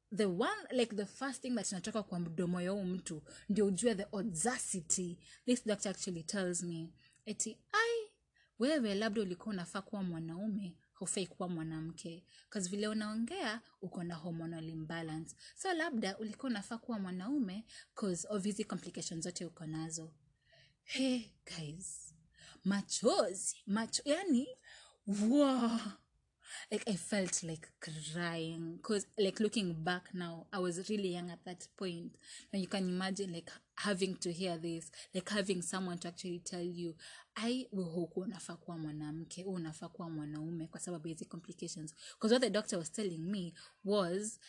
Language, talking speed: English, 130 wpm